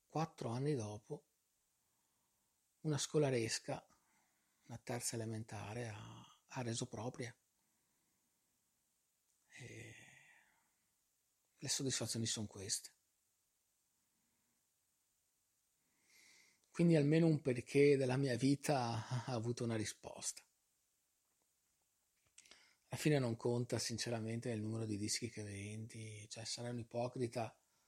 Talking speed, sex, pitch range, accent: 90 wpm, male, 110-135 Hz, native